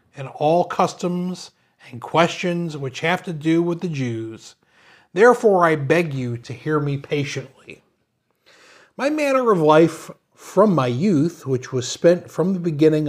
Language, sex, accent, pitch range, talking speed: English, male, American, 135-175 Hz, 150 wpm